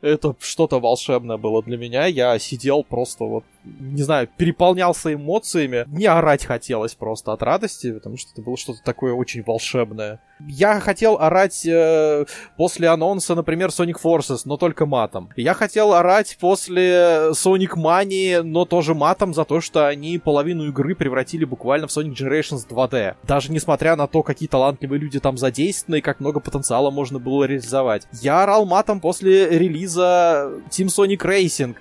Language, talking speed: Russian, 160 wpm